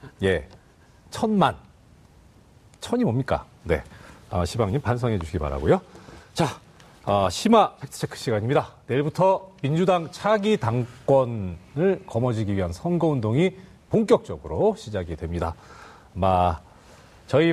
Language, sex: Korean, male